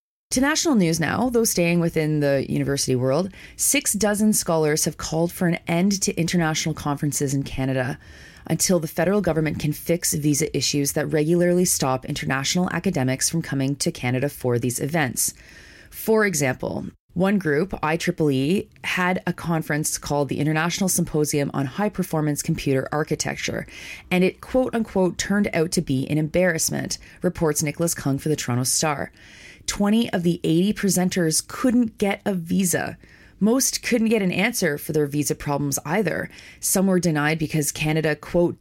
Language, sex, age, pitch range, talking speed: English, female, 30-49, 145-185 Hz, 155 wpm